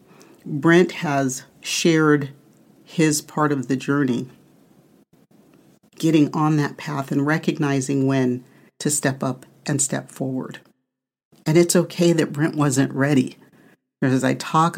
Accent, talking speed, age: American, 130 wpm, 50-69